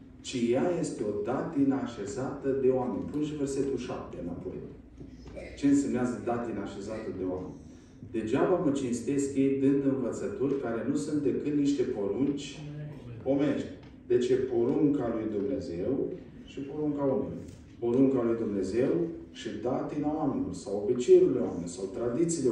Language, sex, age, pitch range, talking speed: Romanian, male, 40-59, 125-165 Hz, 135 wpm